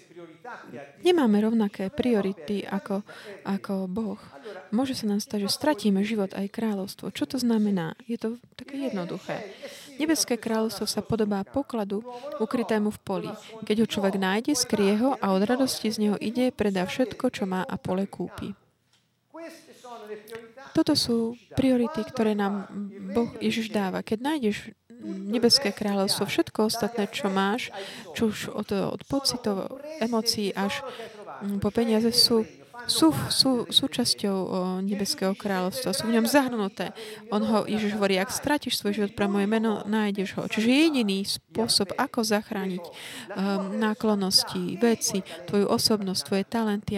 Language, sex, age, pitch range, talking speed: Slovak, female, 20-39, 195-235 Hz, 140 wpm